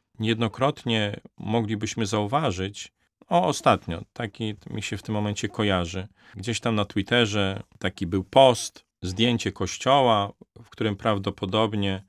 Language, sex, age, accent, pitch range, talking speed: Polish, male, 40-59, native, 95-110 Hz, 120 wpm